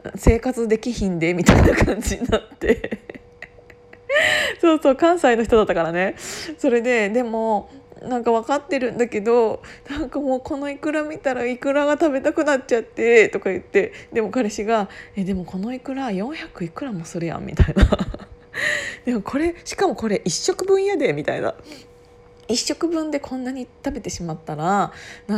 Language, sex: Japanese, female